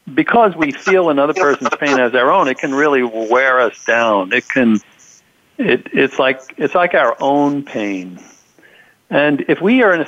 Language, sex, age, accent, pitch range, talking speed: English, male, 60-79, American, 120-155 Hz, 185 wpm